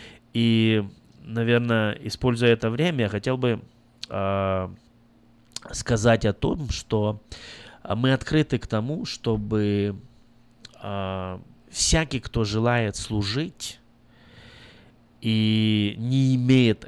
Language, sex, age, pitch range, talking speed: Russian, male, 20-39, 100-120 Hz, 90 wpm